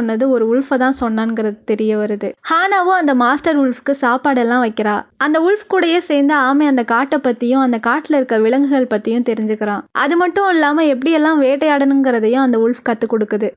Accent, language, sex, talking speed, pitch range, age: native, Tamil, female, 160 wpm, 230-295 Hz, 20-39